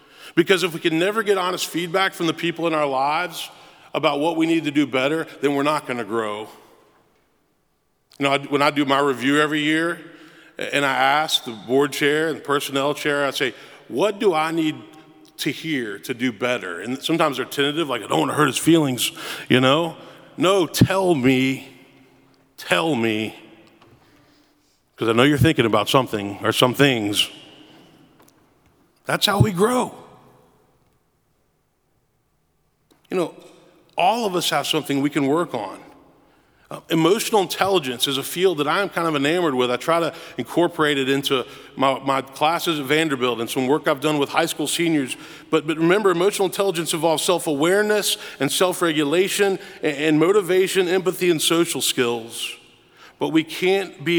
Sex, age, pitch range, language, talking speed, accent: male, 40-59, 135-170 Hz, English, 165 wpm, American